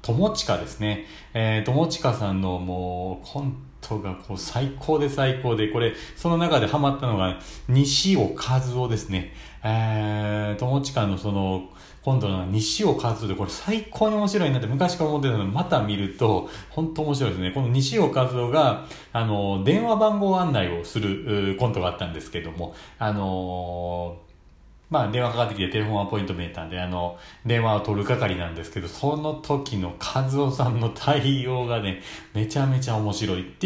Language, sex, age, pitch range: Japanese, male, 40-59, 95-140 Hz